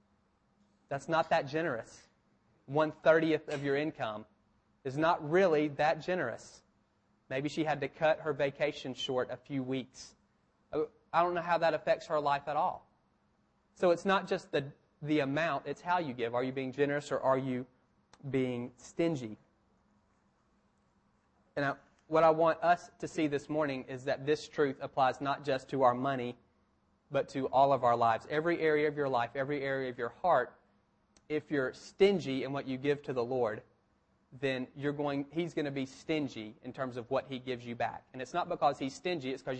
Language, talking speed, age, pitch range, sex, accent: English, 185 wpm, 30-49, 130-155 Hz, male, American